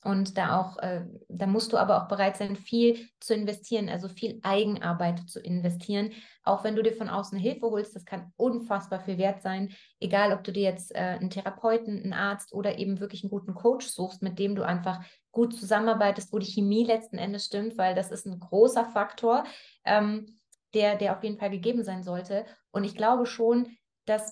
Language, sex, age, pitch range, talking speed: German, female, 20-39, 190-225 Hz, 200 wpm